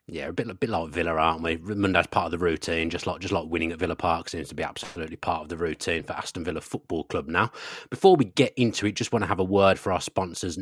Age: 30-49